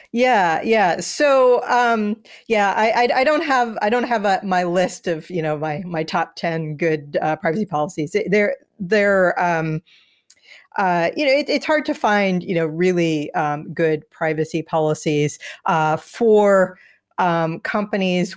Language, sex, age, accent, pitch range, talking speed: English, female, 40-59, American, 160-195 Hz, 165 wpm